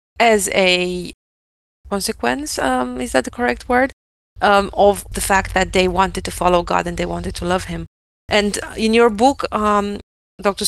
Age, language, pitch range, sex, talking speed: 20-39, English, 180-215 Hz, female, 175 wpm